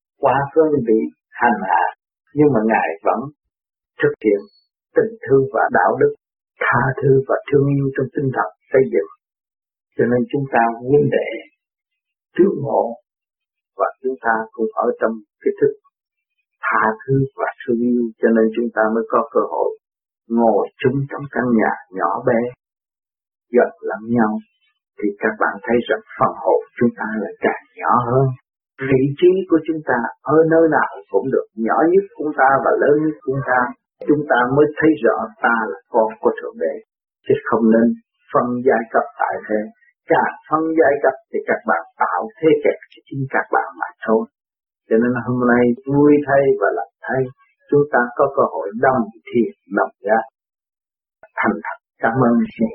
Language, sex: Vietnamese, male